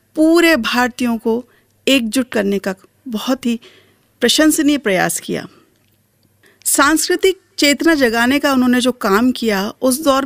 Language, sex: Hindi, female